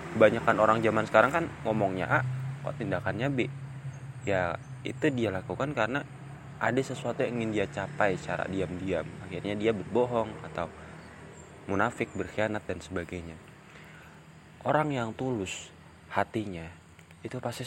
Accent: native